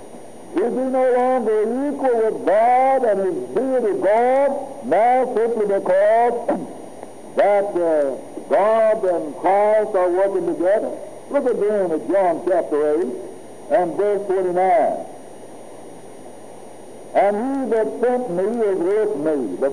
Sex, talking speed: male, 120 wpm